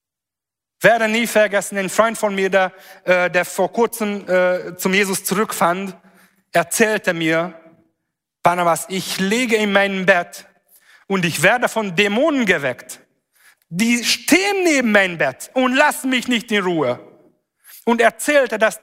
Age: 40-59